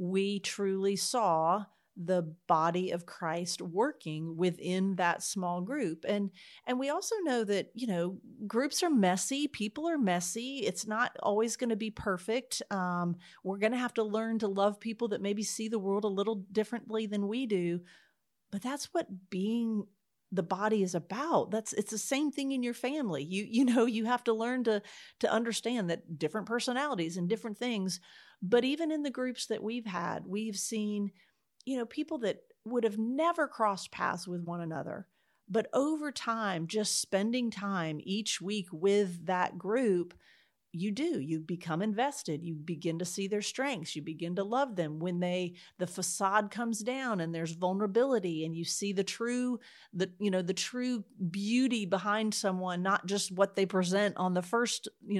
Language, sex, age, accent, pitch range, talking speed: English, female, 40-59, American, 180-235 Hz, 180 wpm